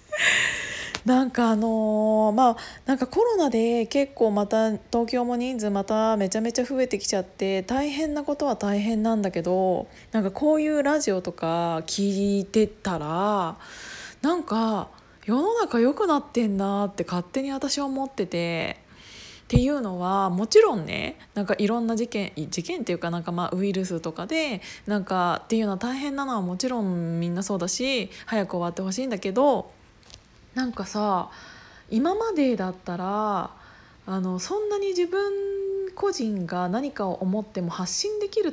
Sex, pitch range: female, 185-270 Hz